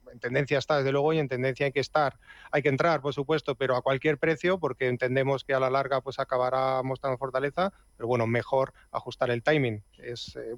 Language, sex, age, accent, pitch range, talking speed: Spanish, male, 30-49, Spanish, 135-165 Hz, 215 wpm